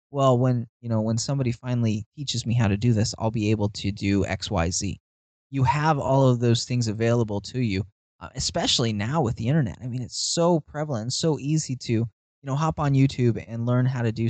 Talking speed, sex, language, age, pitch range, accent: 225 wpm, male, English, 20-39, 110-135 Hz, American